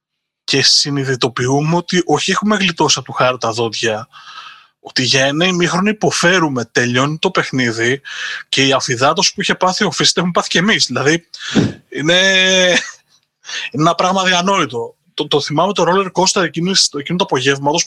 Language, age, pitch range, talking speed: Greek, 20-39, 140-185 Hz, 165 wpm